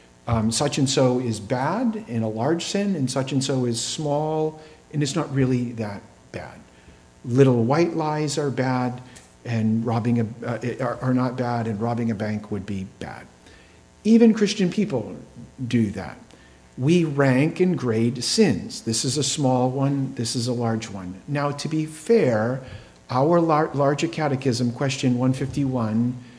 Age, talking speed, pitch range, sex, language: 50-69, 150 wpm, 115-145 Hz, male, English